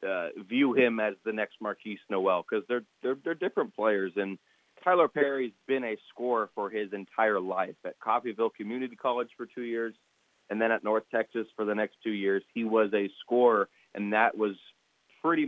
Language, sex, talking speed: English, male, 190 wpm